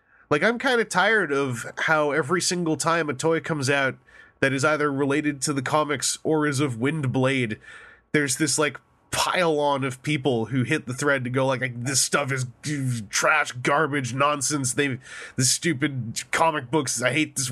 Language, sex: English, male